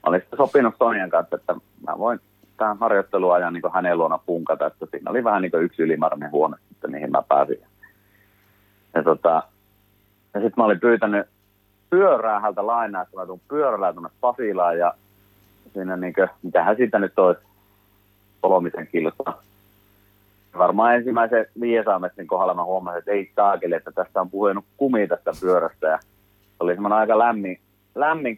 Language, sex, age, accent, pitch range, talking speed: Finnish, male, 30-49, native, 90-100 Hz, 150 wpm